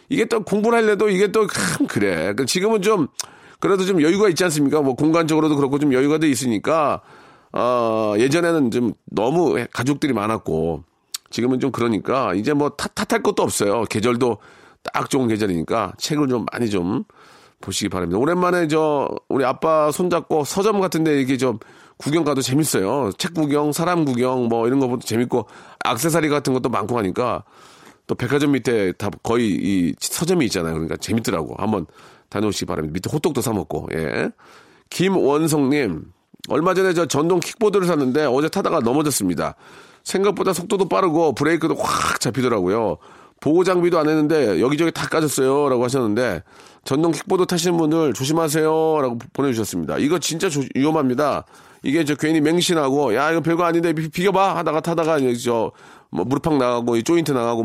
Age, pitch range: 40-59, 125-175 Hz